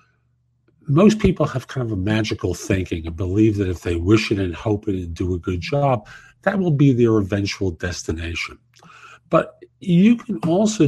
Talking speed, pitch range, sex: 180 wpm, 105-150 Hz, male